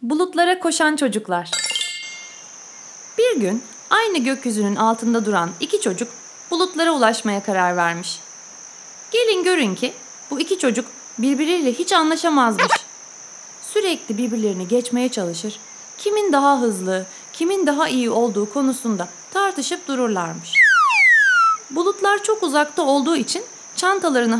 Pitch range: 230-355 Hz